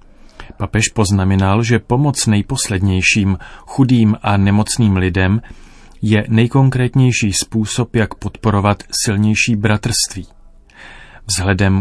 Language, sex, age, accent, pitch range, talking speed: Czech, male, 30-49, native, 100-120 Hz, 85 wpm